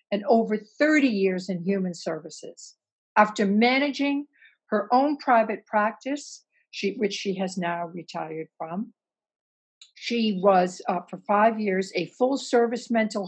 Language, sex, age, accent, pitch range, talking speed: English, female, 60-79, American, 195-240 Hz, 130 wpm